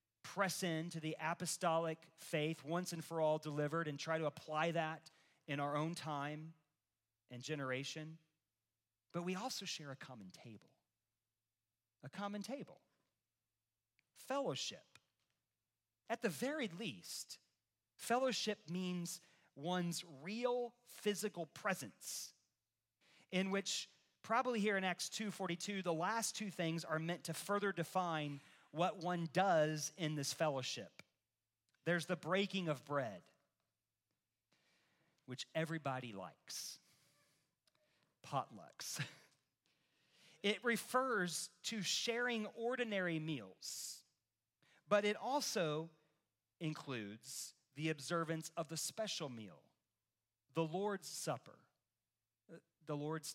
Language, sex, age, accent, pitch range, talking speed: English, male, 40-59, American, 135-185 Hz, 105 wpm